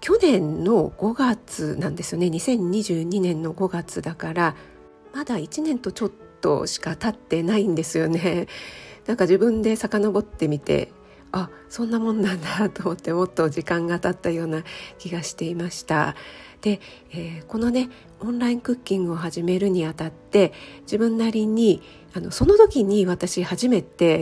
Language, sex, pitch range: Japanese, female, 165-200 Hz